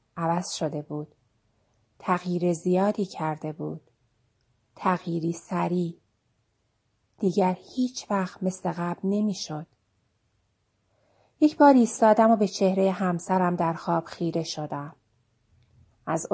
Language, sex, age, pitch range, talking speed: English, female, 30-49, 130-195 Hz, 100 wpm